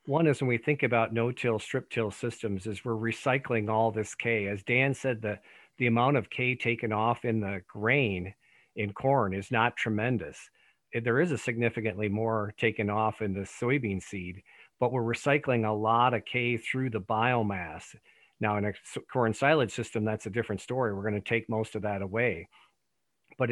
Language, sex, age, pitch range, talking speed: English, male, 50-69, 105-125 Hz, 185 wpm